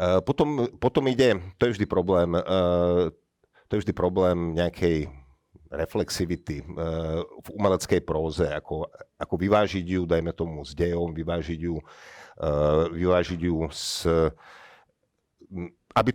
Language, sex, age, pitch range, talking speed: Slovak, male, 50-69, 80-105 Hz, 110 wpm